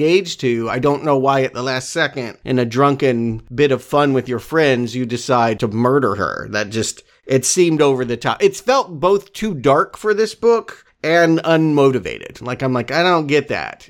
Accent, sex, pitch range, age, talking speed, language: American, male, 120-155 Hz, 40-59, 205 wpm, English